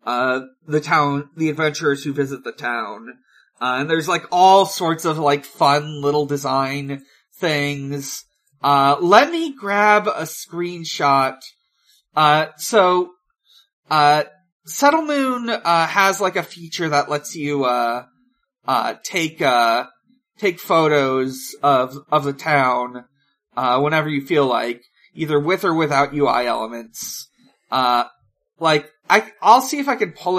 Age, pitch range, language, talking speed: 30-49, 140-185 Hz, English, 140 wpm